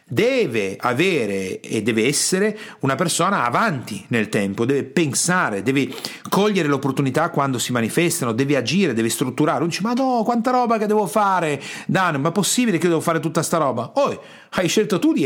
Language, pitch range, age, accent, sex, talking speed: Italian, 135-185 Hz, 40-59, native, male, 180 wpm